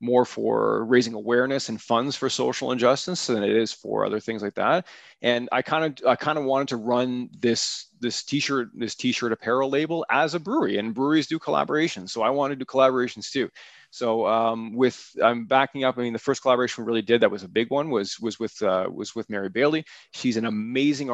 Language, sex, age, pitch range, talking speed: English, male, 30-49, 110-135 Hz, 220 wpm